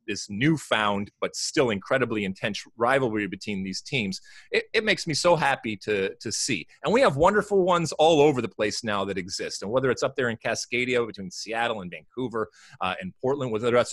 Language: English